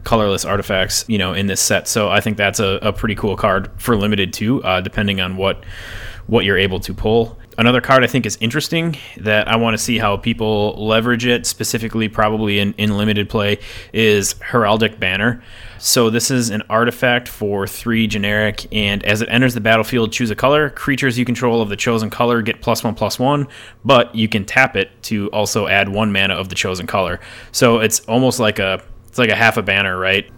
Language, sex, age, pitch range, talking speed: English, male, 20-39, 100-115 Hz, 210 wpm